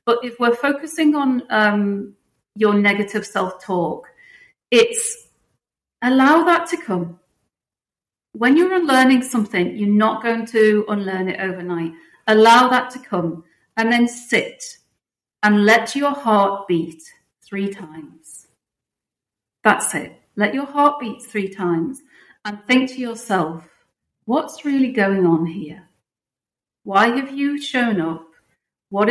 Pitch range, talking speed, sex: 190-250 Hz, 130 wpm, female